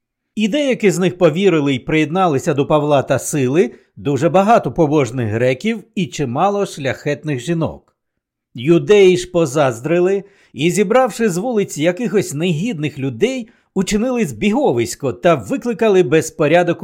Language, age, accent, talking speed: Ukrainian, 60-79, native, 120 wpm